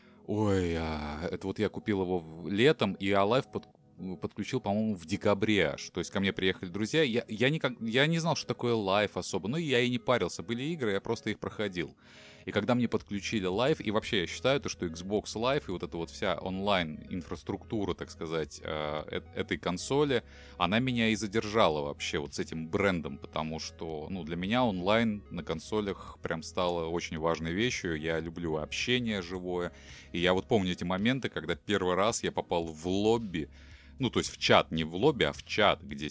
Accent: native